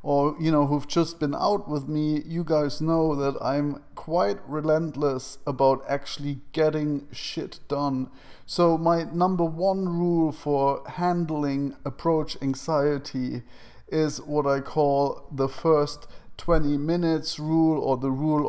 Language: English